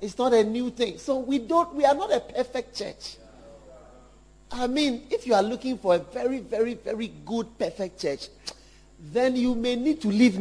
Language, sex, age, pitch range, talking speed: English, male, 50-69, 190-260 Hz, 195 wpm